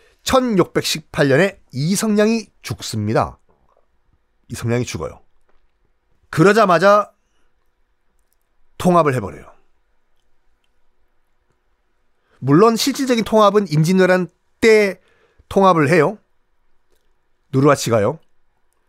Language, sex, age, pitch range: Korean, male, 40-59, 130-210 Hz